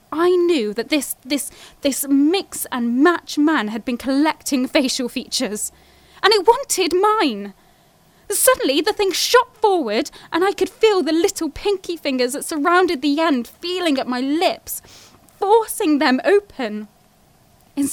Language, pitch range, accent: English, 255-355 Hz, British